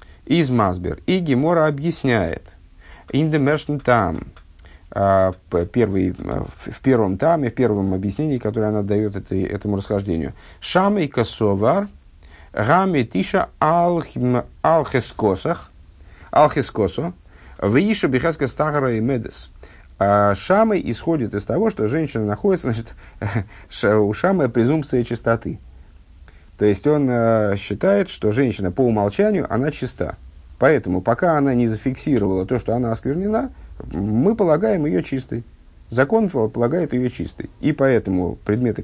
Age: 50-69